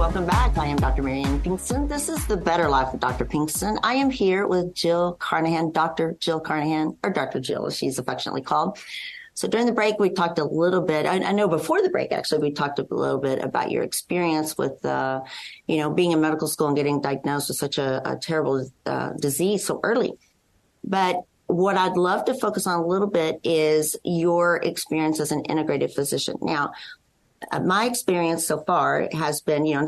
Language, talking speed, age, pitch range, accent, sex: English, 205 wpm, 40-59, 145-185 Hz, American, female